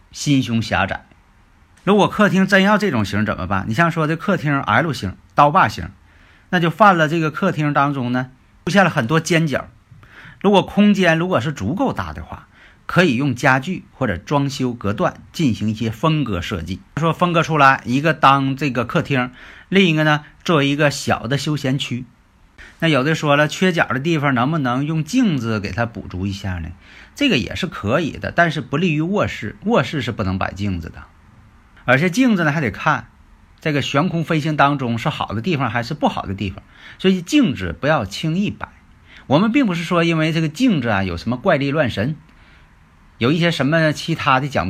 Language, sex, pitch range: Chinese, male, 100-165 Hz